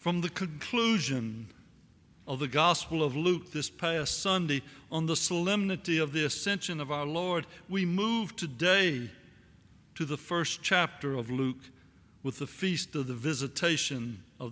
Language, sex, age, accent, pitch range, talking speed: English, male, 60-79, American, 130-170 Hz, 150 wpm